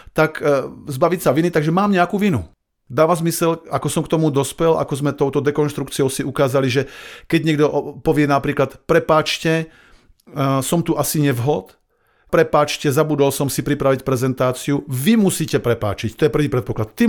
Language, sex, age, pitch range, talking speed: Slovak, male, 40-59, 120-155 Hz, 160 wpm